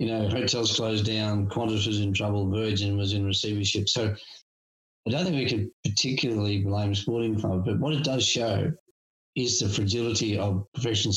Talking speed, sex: 175 wpm, male